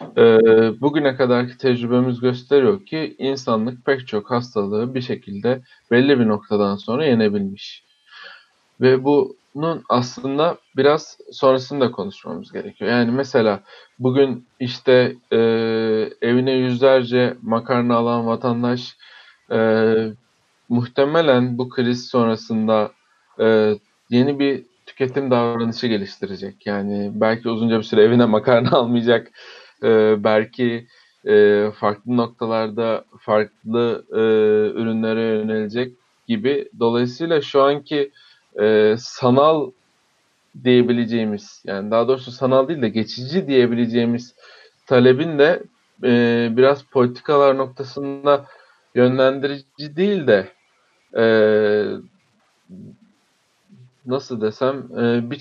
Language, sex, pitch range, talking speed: Turkish, male, 115-135 Hz, 85 wpm